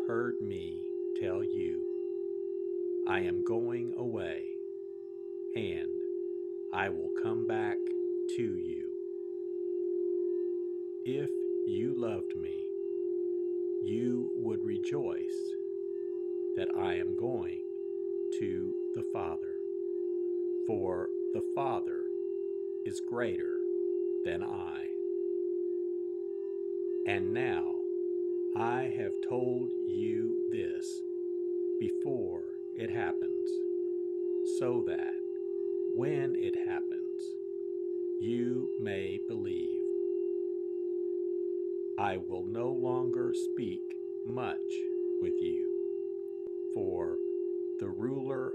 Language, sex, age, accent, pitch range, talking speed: English, male, 50-69, American, 360-375 Hz, 80 wpm